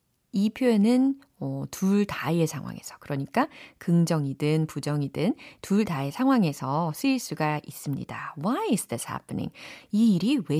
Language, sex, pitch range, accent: Korean, female, 150-245 Hz, native